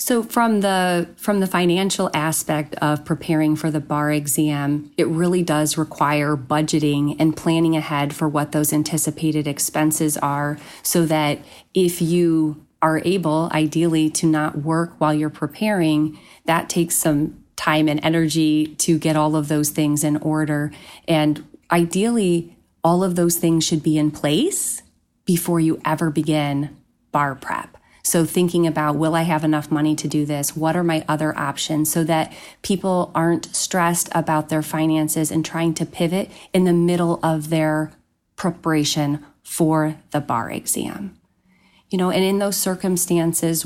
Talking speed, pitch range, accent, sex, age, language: 155 wpm, 155-170 Hz, American, female, 30-49, English